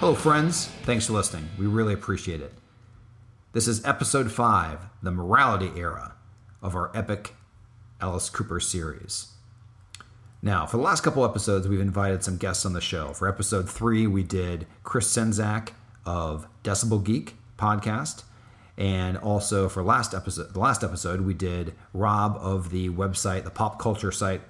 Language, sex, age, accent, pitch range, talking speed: English, male, 40-59, American, 95-115 Hz, 160 wpm